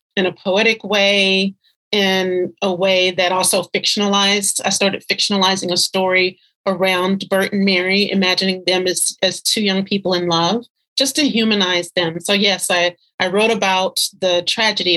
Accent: American